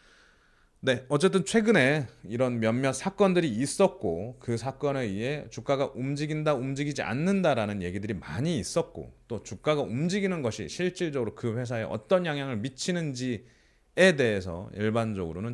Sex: male